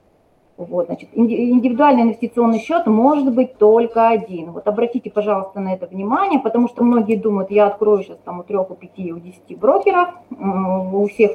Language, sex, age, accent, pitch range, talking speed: Russian, female, 30-49, native, 200-255 Hz, 175 wpm